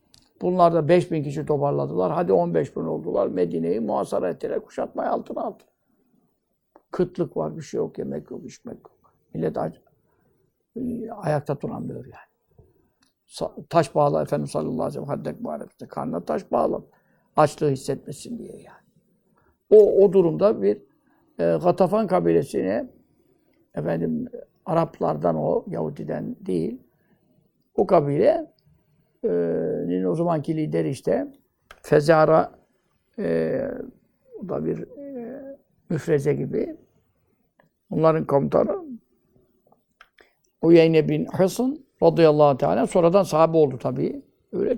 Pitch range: 145-230 Hz